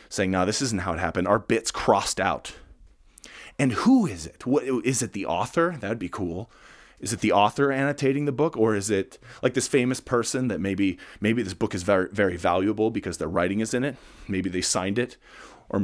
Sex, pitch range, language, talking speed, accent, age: male, 95-130 Hz, English, 215 wpm, American, 30-49